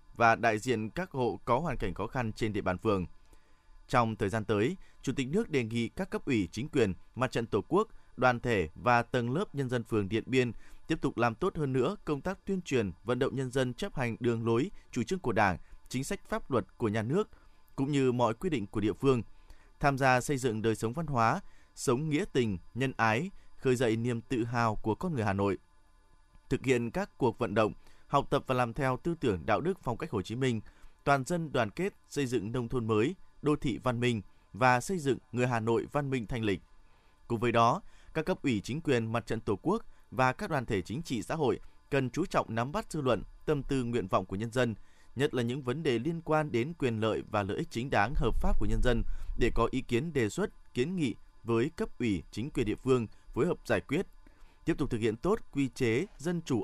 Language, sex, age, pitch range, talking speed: Vietnamese, male, 20-39, 110-145 Hz, 240 wpm